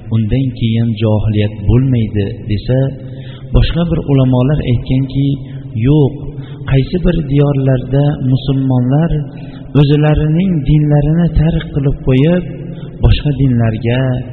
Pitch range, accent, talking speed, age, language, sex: 125-145 Hz, Turkish, 95 wpm, 50-69, Russian, male